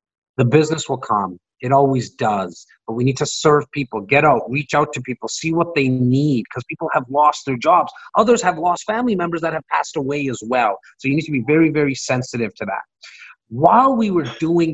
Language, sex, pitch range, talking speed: English, male, 120-165 Hz, 220 wpm